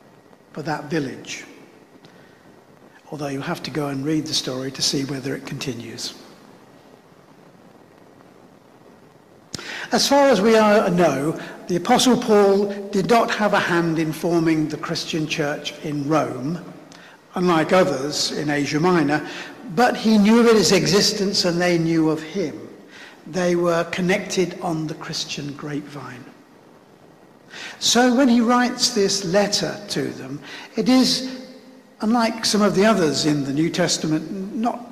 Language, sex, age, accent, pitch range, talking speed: English, male, 60-79, British, 155-210 Hz, 140 wpm